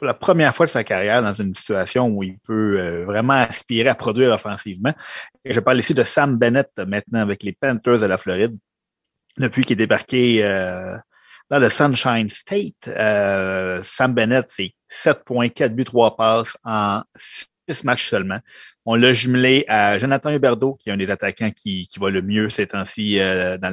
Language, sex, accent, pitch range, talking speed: French, male, Canadian, 105-130 Hz, 175 wpm